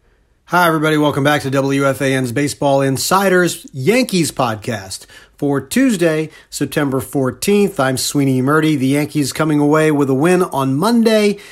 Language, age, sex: English, 40-59, male